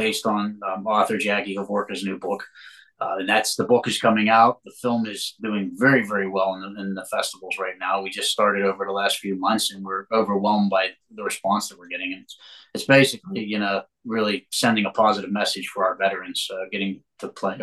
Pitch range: 95-115 Hz